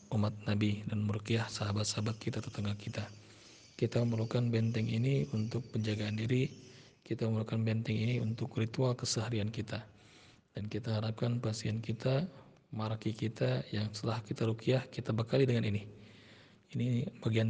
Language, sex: Malay, male